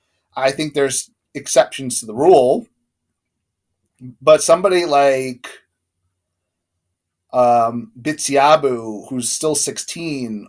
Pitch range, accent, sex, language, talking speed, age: 110-145 Hz, American, male, English, 85 wpm, 30-49